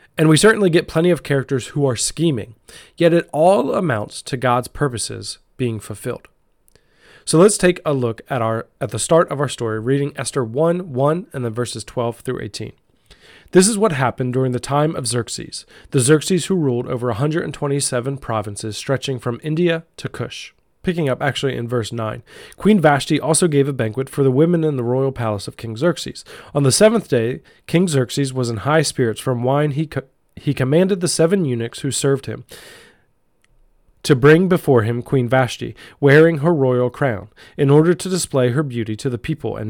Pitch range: 125-160 Hz